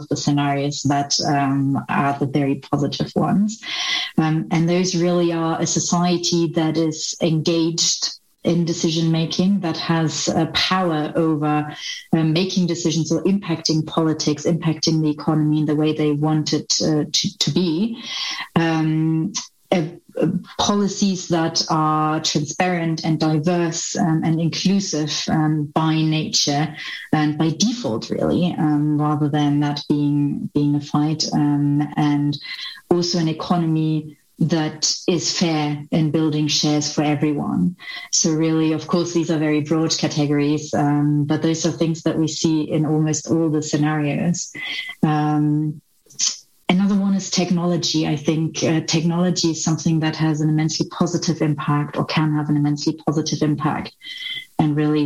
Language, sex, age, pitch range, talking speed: English, female, 30-49, 150-170 Hz, 145 wpm